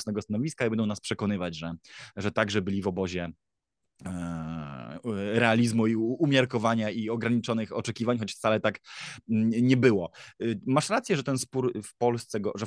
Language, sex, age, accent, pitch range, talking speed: Polish, male, 20-39, native, 100-120 Hz, 140 wpm